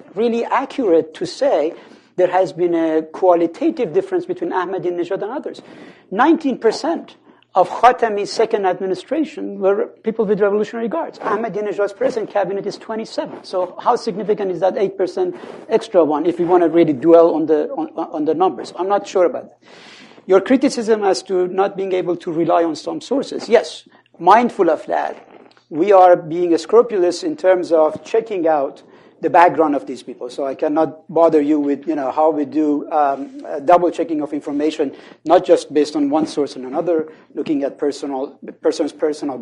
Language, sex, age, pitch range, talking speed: English, male, 60-79, 160-225 Hz, 170 wpm